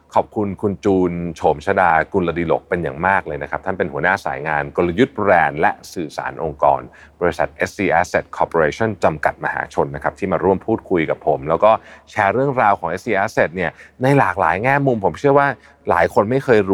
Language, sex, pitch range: Thai, male, 85-115 Hz